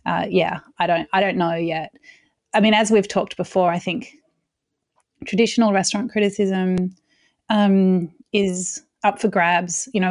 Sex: female